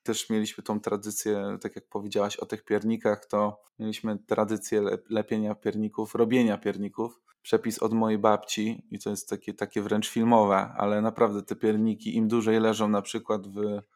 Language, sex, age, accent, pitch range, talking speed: Polish, male, 20-39, native, 105-115 Hz, 165 wpm